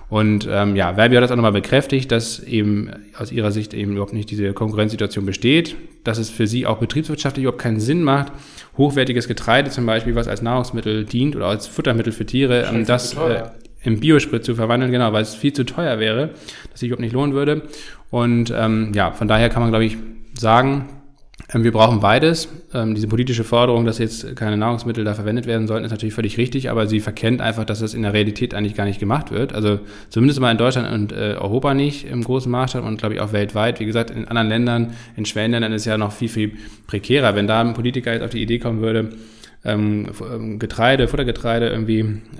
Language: German